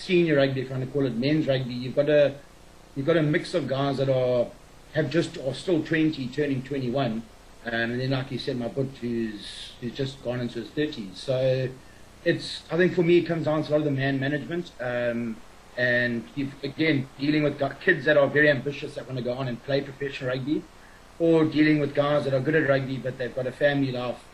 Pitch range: 120-145 Hz